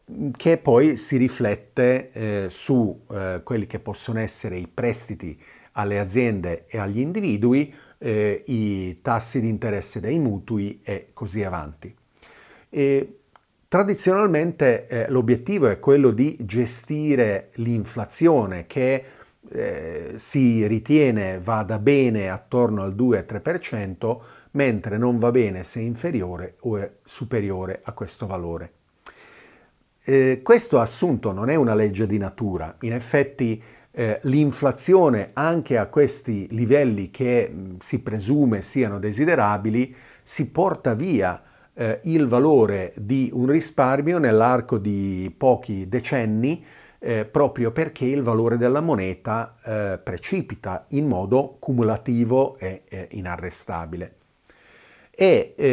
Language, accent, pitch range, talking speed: Italian, native, 105-135 Hz, 115 wpm